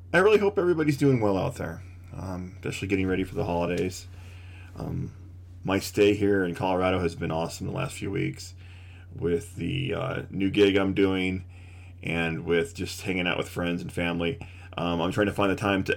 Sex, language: male, English